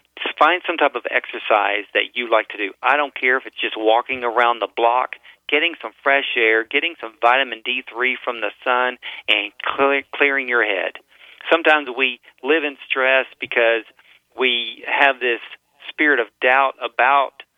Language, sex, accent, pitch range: English, male, American, 120-140 Hz